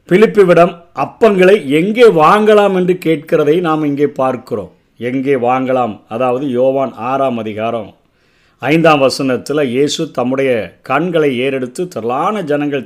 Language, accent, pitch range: Tamil, native, 135-180 Hz